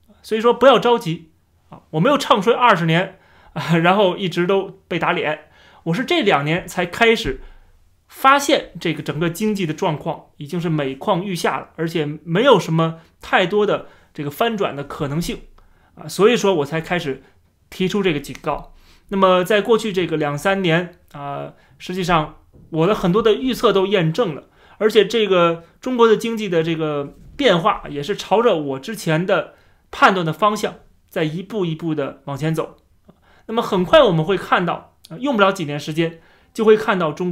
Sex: male